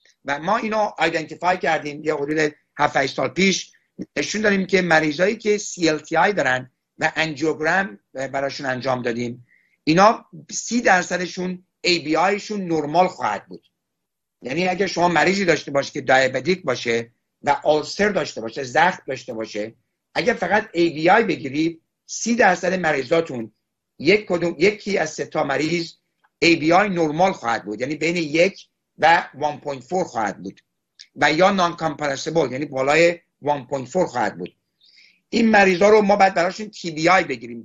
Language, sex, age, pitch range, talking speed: Persian, male, 60-79, 135-180 Hz, 140 wpm